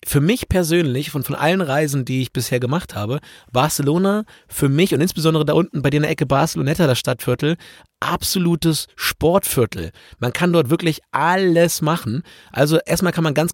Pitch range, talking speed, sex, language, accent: 145-180 Hz, 175 wpm, male, German, German